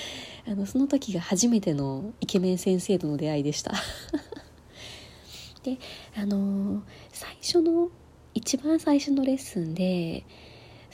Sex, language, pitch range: female, Japanese, 185-250 Hz